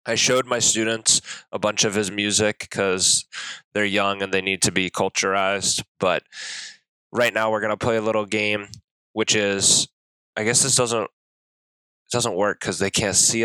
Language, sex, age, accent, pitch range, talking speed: English, male, 20-39, American, 100-115 Hz, 185 wpm